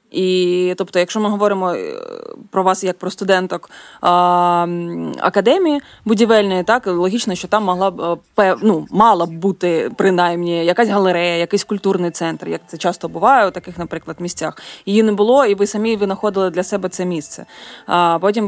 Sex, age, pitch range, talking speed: female, 20-39, 175-205 Hz, 160 wpm